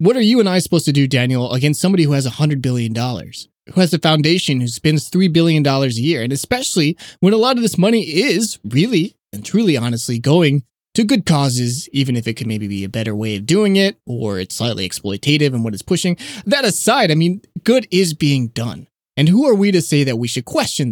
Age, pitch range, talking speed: 20-39, 130-185 Hz, 230 wpm